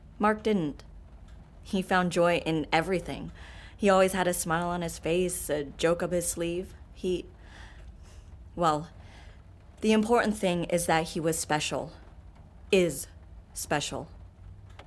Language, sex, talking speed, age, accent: English, female, 130 wpm, 20-39, American